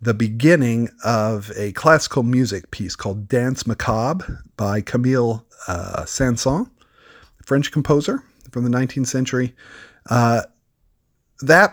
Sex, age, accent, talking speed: male, 40-59, American, 120 wpm